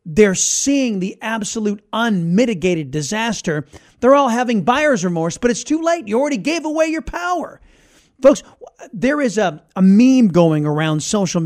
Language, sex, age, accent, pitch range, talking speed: English, male, 40-59, American, 170-245 Hz, 155 wpm